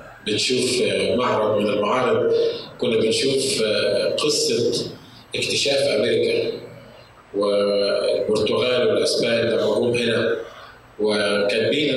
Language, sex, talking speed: Arabic, male, 75 wpm